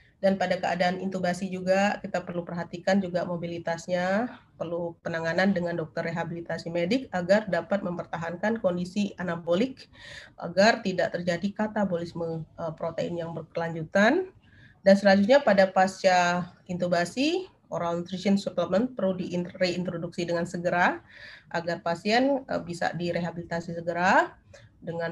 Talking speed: 110 wpm